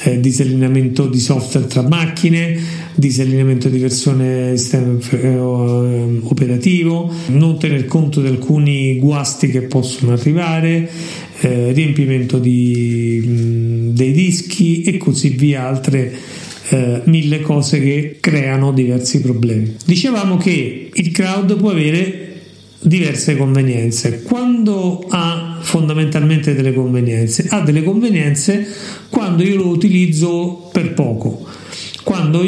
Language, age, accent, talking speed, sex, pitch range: Italian, 40-59, native, 105 wpm, male, 130-175 Hz